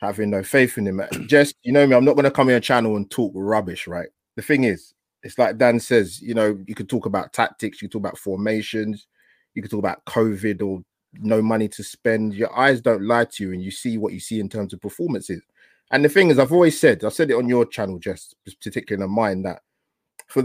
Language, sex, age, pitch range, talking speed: English, male, 20-39, 105-130 Hz, 250 wpm